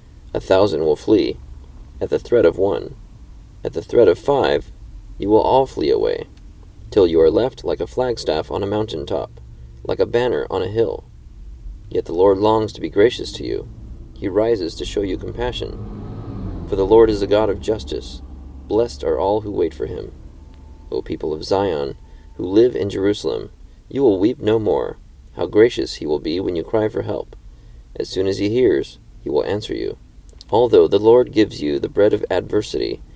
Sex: male